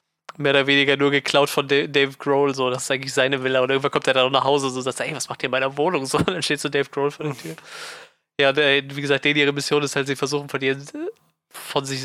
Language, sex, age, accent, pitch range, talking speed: German, male, 20-39, German, 135-145 Hz, 275 wpm